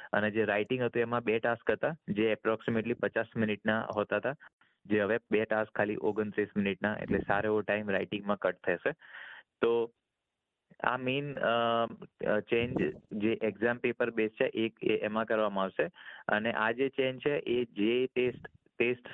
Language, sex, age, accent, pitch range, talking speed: Gujarati, male, 20-39, native, 100-115 Hz, 80 wpm